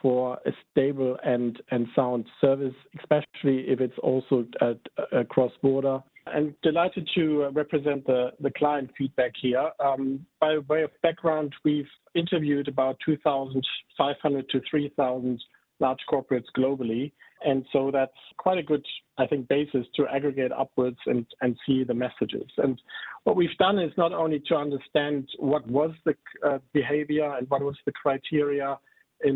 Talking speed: 150 wpm